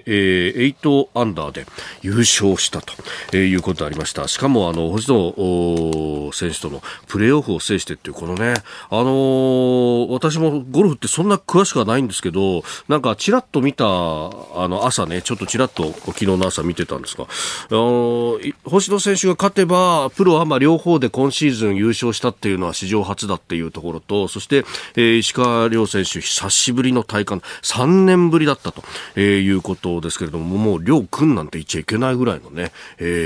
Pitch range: 85-135 Hz